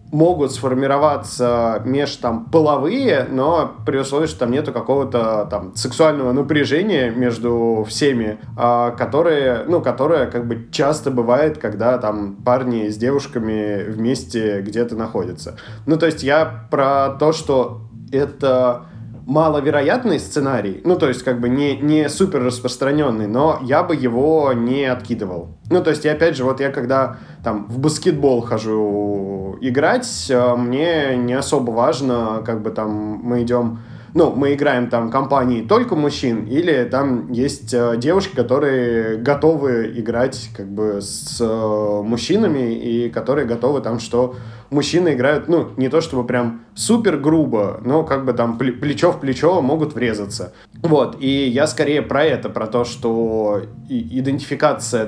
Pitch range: 115-145 Hz